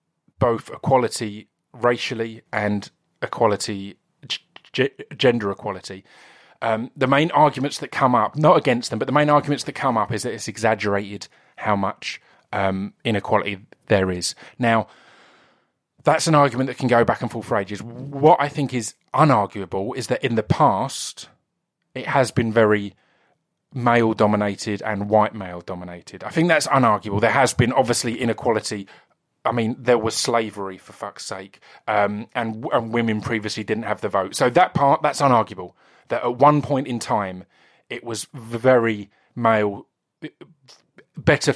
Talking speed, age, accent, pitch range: 155 wpm, 30-49, British, 105-135 Hz